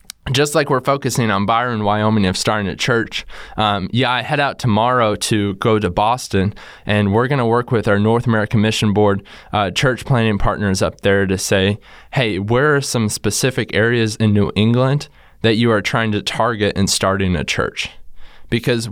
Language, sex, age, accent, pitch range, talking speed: English, male, 20-39, American, 100-120 Hz, 190 wpm